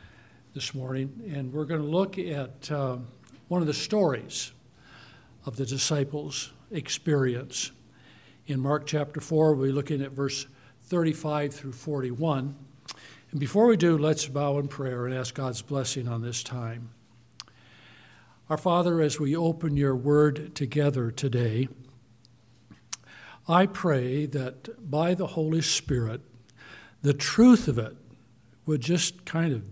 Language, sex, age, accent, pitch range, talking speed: English, male, 60-79, American, 125-155 Hz, 135 wpm